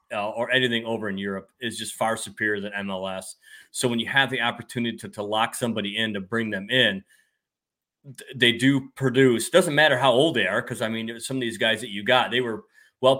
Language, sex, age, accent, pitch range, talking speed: English, male, 30-49, American, 105-125 Hz, 225 wpm